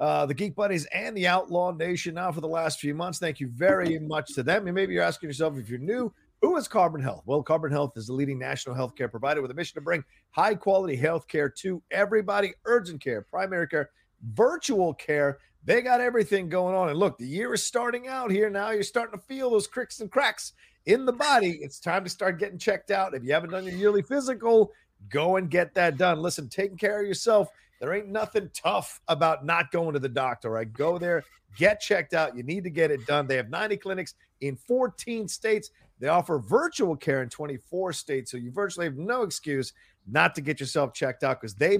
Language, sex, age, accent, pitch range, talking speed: English, male, 40-59, American, 140-200 Hz, 225 wpm